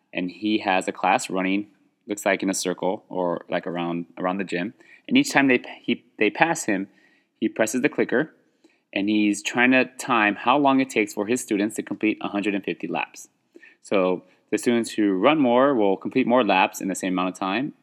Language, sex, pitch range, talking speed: English, male, 95-120 Hz, 205 wpm